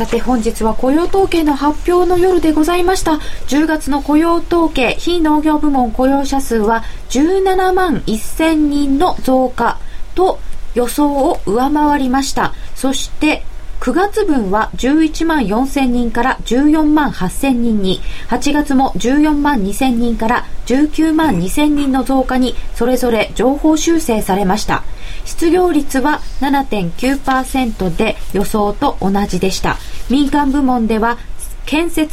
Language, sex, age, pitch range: Japanese, female, 20-39, 225-305 Hz